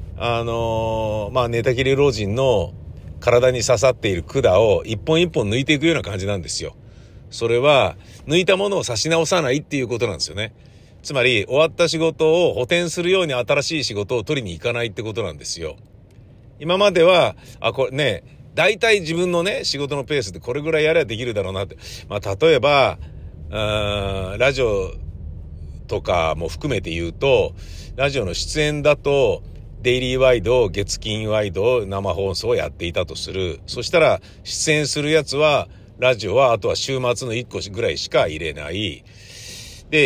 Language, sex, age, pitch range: Japanese, male, 50-69, 95-135 Hz